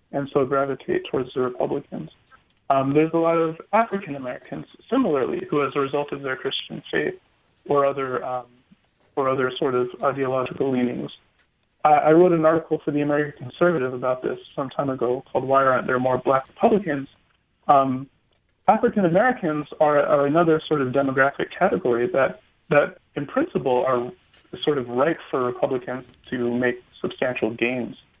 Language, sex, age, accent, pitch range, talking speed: English, male, 30-49, American, 125-165 Hz, 160 wpm